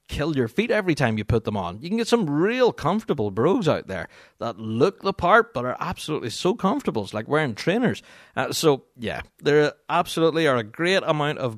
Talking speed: 210 wpm